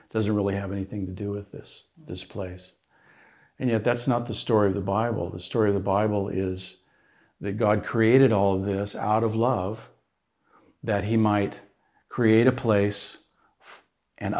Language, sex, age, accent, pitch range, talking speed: English, male, 50-69, American, 100-120 Hz, 170 wpm